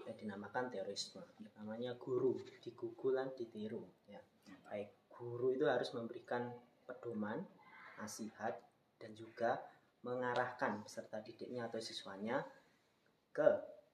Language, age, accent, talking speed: Indonesian, 30-49, native, 100 wpm